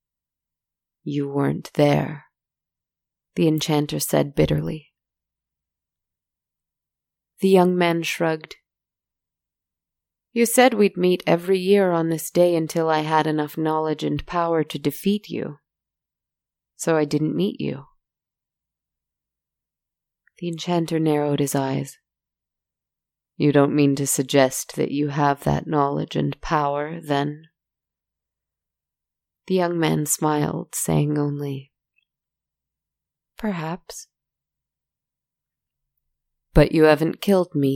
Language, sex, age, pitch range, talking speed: English, female, 30-49, 130-170 Hz, 105 wpm